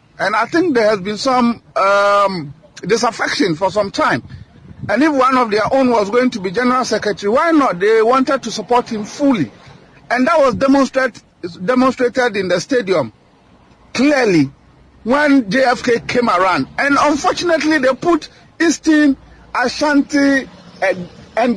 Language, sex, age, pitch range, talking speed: English, male, 50-69, 220-285 Hz, 145 wpm